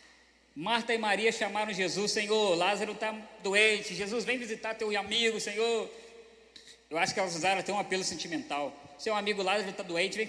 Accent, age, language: Brazilian, 20-39, Portuguese